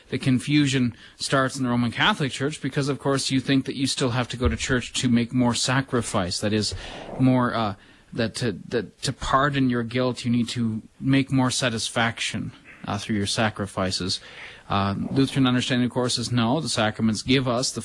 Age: 30-49